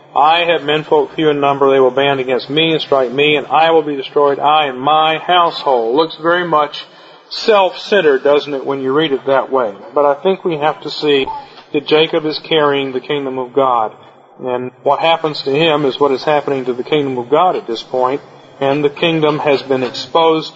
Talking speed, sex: 215 wpm, male